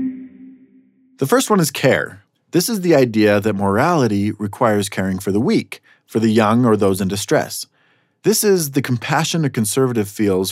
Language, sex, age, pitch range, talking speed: English, male, 30-49, 100-135 Hz, 170 wpm